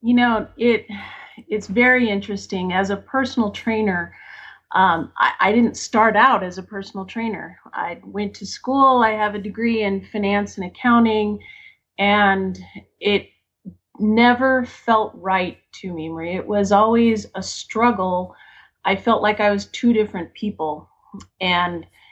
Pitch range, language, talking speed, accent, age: 195-235 Hz, English, 145 wpm, American, 30-49